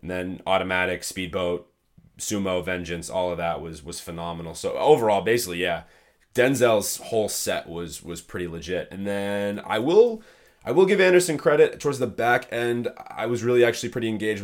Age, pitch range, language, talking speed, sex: 20-39, 90-110 Hz, English, 175 wpm, male